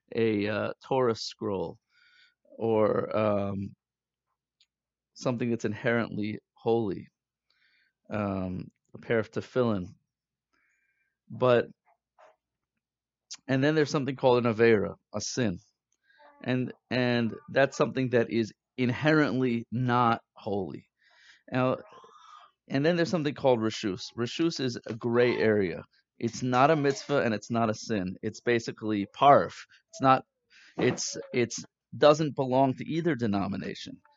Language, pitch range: English, 115-140 Hz